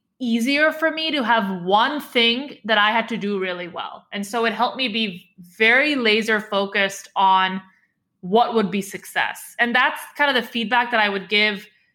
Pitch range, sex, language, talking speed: 195-245 Hz, female, English, 190 wpm